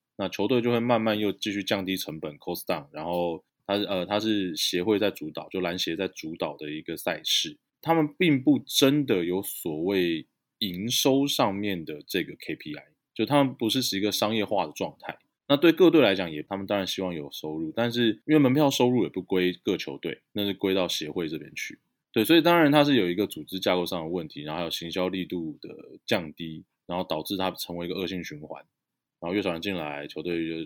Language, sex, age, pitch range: Chinese, male, 20-39, 85-120 Hz